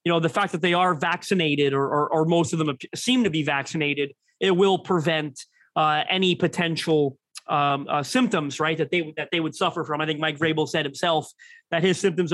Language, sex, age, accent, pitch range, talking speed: English, male, 30-49, American, 160-185 Hz, 215 wpm